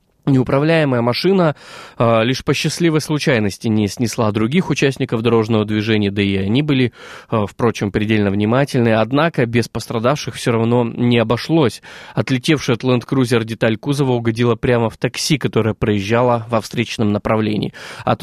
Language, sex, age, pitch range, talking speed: Russian, male, 20-39, 110-145 Hz, 145 wpm